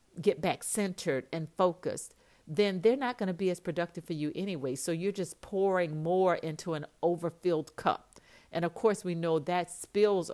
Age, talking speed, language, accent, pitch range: 50-69, 185 wpm, English, American, 155-190 Hz